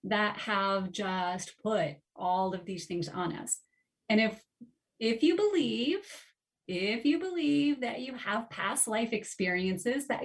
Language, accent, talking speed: English, American, 145 wpm